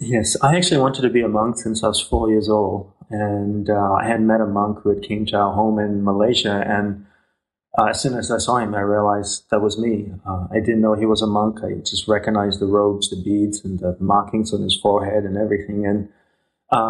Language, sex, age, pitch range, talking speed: English, male, 30-49, 100-115 Hz, 240 wpm